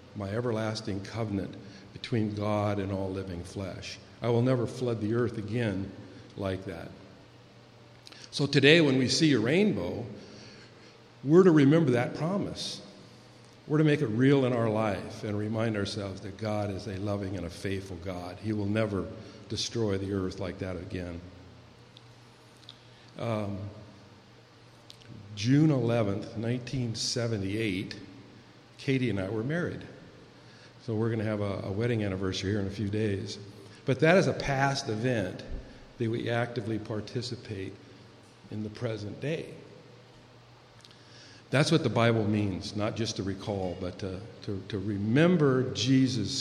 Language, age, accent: English, 50-69, American